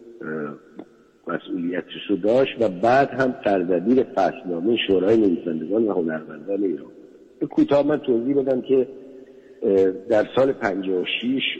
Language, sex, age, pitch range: Persian, male, 60-79, 85-130 Hz